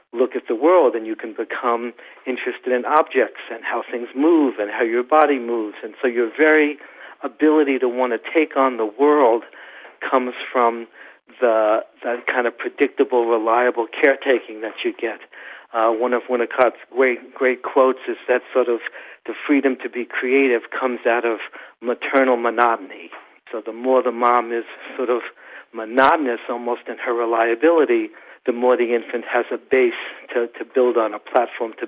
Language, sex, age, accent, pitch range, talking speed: English, male, 60-79, American, 120-130 Hz, 175 wpm